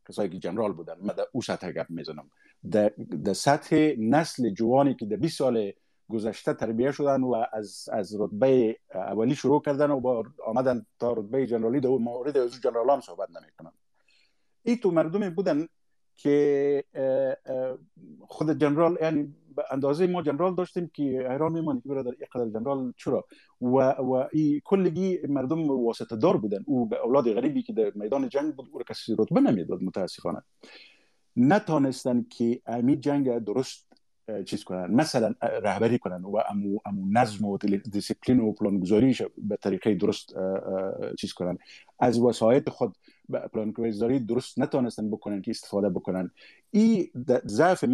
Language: Persian